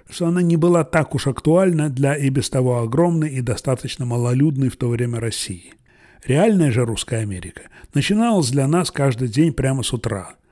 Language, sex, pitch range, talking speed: Russian, male, 120-155 Hz, 175 wpm